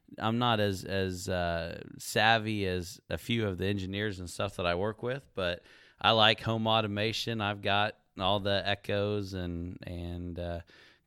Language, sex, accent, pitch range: English, male, American, 90-110 Hz